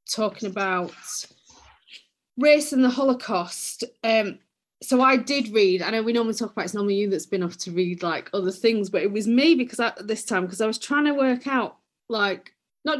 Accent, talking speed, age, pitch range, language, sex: British, 210 wpm, 30-49, 180-230 Hz, English, female